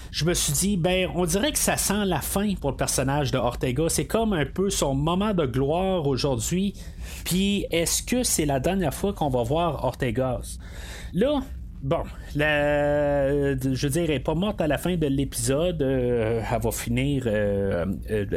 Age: 30-49